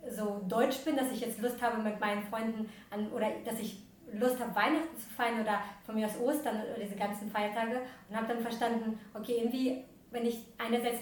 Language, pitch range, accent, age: German, 205-235 Hz, German, 20-39